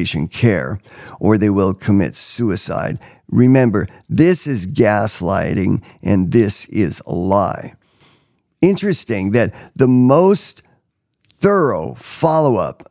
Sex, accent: male, American